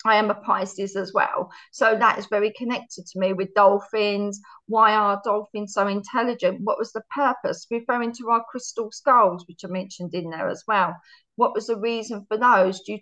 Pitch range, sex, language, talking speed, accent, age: 195-245 Hz, female, English, 200 wpm, British, 40-59